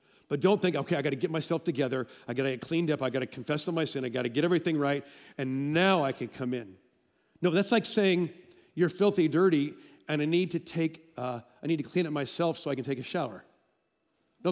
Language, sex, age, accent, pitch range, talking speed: English, male, 40-59, American, 140-200 Hz, 250 wpm